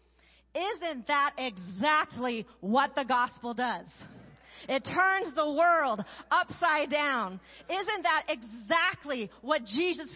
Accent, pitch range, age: American, 205-310 Hz, 40-59